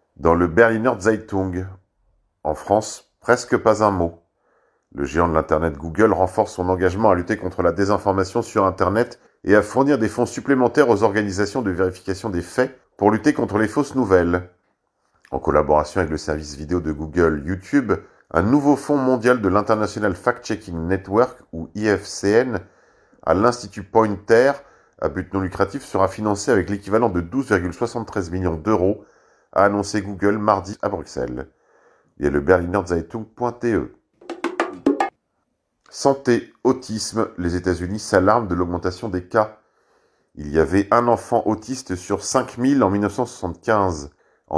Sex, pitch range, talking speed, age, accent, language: male, 90-110 Hz, 145 wpm, 40-59, French, French